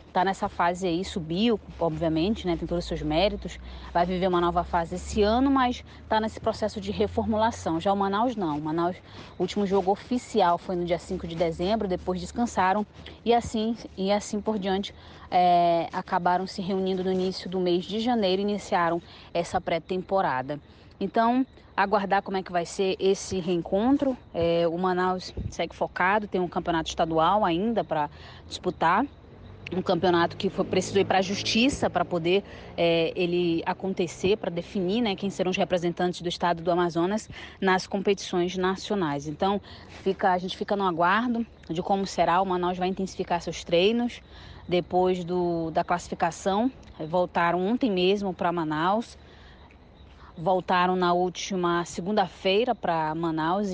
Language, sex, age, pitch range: Portuguese, female, 20-39, 175-200 Hz